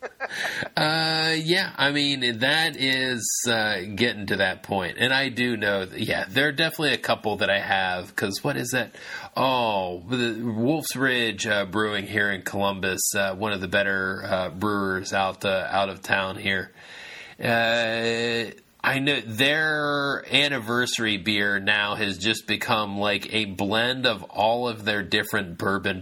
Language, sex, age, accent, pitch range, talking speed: English, male, 30-49, American, 100-135 Hz, 165 wpm